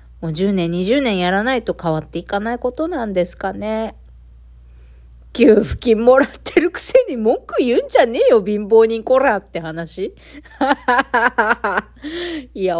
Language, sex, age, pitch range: Japanese, female, 40-59, 150-255 Hz